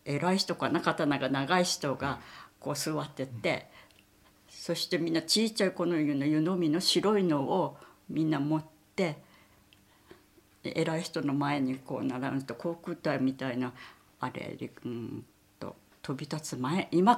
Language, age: Japanese, 60-79